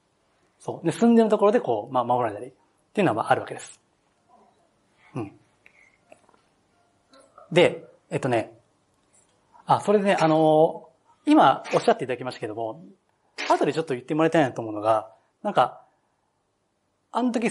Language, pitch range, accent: Japanese, 150-235 Hz, native